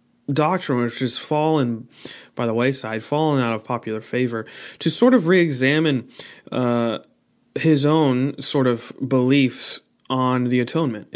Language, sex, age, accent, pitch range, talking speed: English, male, 30-49, American, 120-145 Hz, 130 wpm